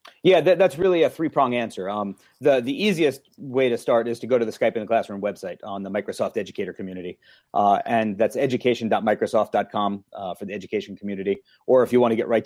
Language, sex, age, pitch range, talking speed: English, male, 30-49, 110-135 Hz, 215 wpm